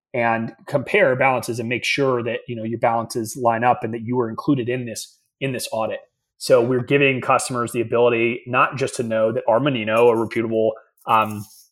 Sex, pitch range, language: male, 115-130 Hz, English